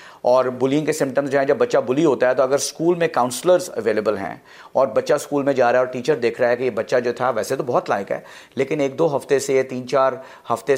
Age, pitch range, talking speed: 50-69, 115-145 Hz, 265 wpm